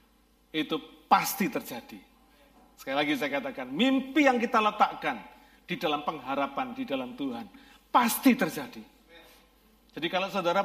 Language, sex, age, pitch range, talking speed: Malay, male, 40-59, 215-270 Hz, 125 wpm